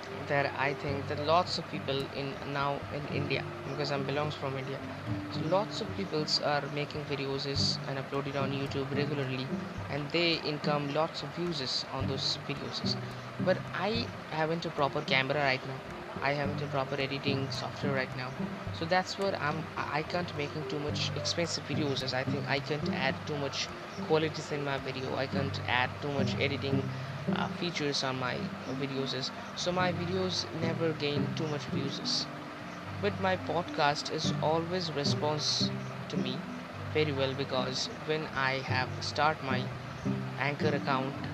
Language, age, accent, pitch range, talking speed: Bengali, 20-39, native, 130-155 Hz, 165 wpm